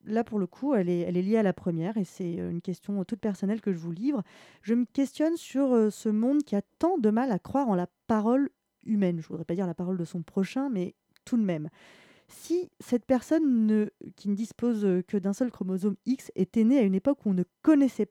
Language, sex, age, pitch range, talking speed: French, female, 20-39, 185-240 Hz, 240 wpm